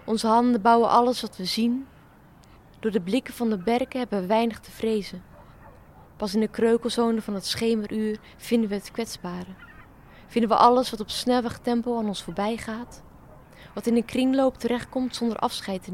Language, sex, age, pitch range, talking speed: Dutch, female, 20-39, 195-230 Hz, 180 wpm